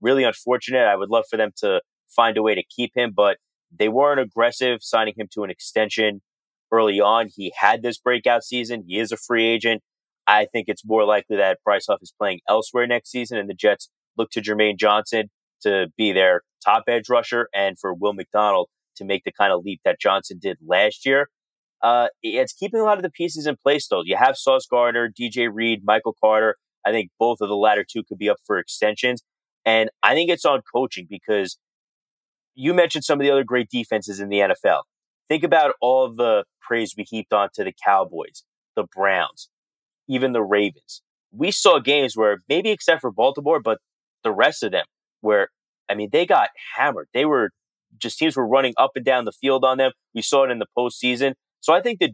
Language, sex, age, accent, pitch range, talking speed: English, male, 30-49, American, 105-130 Hz, 210 wpm